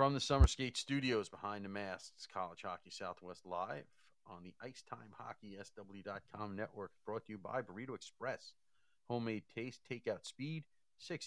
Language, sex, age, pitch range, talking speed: English, male, 40-59, 90-115 Hz, 160 wpm